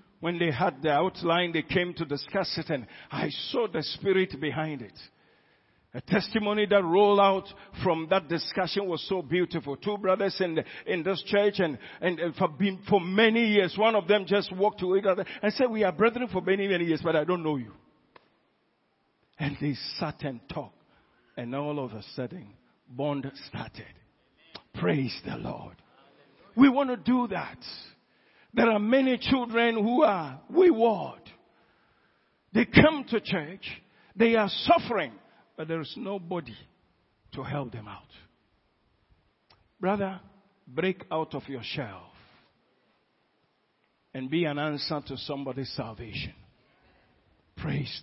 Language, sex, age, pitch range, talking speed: English, male, 50-69, 145-200 Hz, 150 wpm